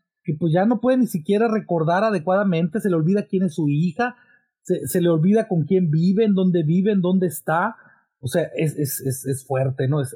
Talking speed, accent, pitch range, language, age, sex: 225 wpm, Mexican, 155-215 Hz, Spanish, 40-59, male